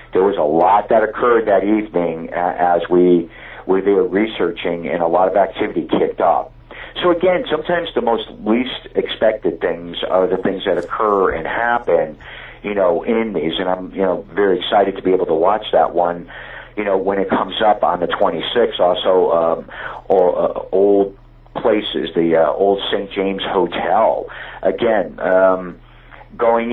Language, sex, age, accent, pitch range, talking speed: English, male, 50-69, American, 90-115 Hz, 175 wpm